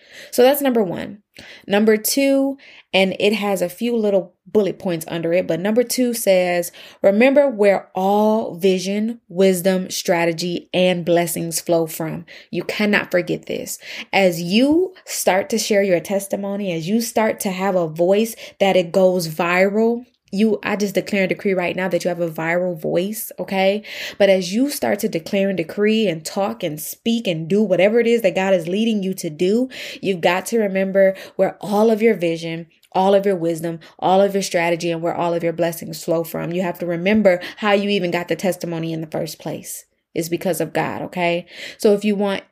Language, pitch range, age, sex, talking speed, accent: English, 175-220 Hz, 20-39, female, 195 wpm, American